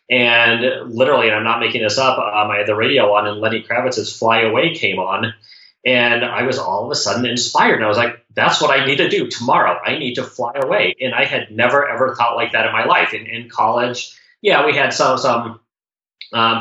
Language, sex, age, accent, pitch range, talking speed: English, male, 30-49, American, 115-130 Hz, 235 wpm